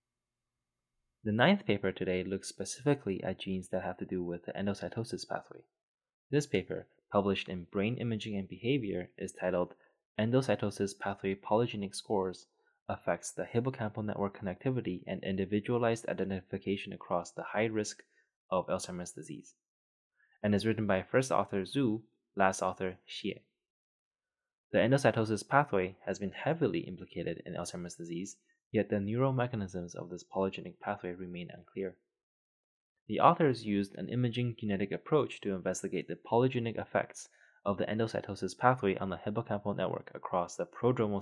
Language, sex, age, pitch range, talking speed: English, male, 20-39, 95-115 Hz, 145 wpm